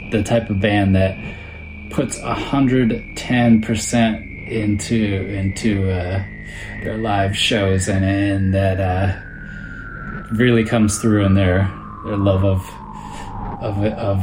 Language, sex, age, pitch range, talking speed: English, male, 20-39, 100-120 Hz, 120 wpm